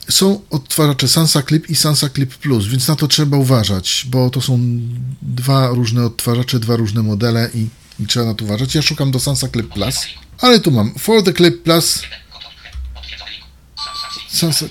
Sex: male